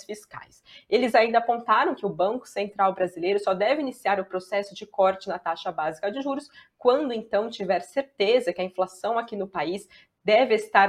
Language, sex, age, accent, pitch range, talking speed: Portuguese, female, 20-39, Brazilian, 185-225 Hz, 180 wpm